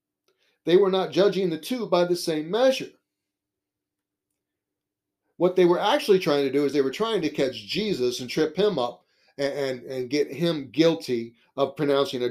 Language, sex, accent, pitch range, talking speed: English, male, American, 135-195 Hz, 180 wpm